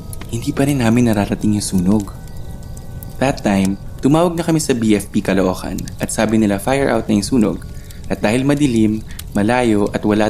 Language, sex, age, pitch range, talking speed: Filipino, male, 20-39, 95-120 Hz, 170 wpm